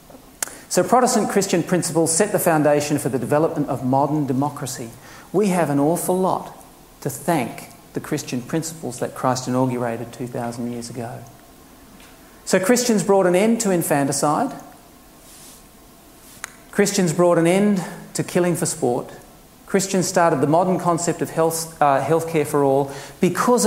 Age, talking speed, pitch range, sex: 40-59, 140 wpm, 140-180 Hz, male